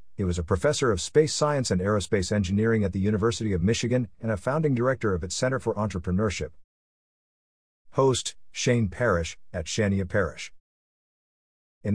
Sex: male